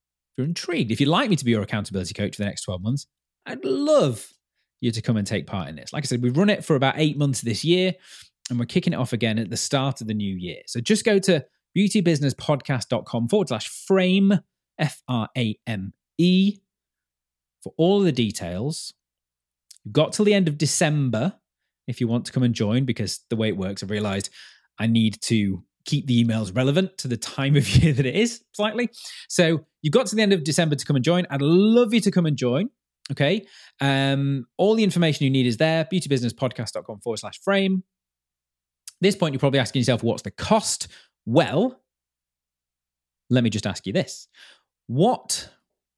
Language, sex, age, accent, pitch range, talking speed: English, male, 30-49, British, 105-165 Hz, 200 wpm